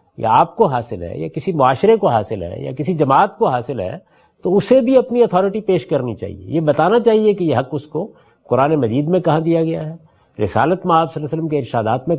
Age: 50-69